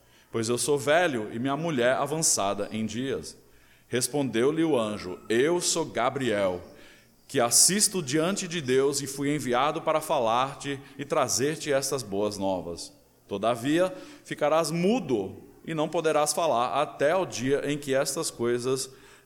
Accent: Brazilian